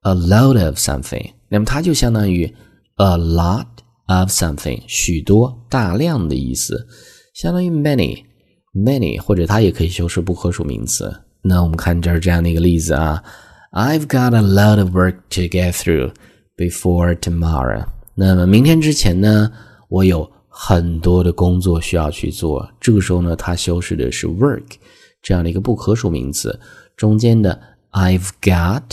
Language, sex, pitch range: Chinese, male, 85-110 Hz